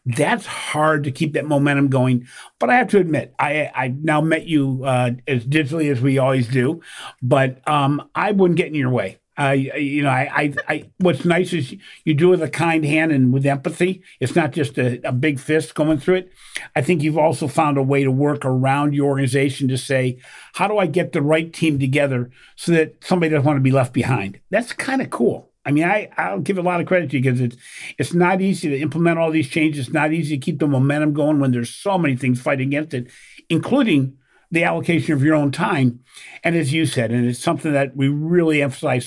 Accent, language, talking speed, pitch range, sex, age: American, English, 230 wpm, 130-160 Hz, male, 50-69